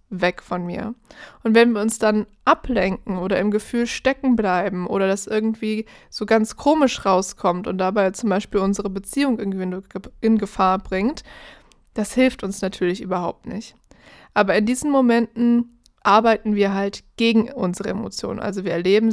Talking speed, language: 155 wpm, German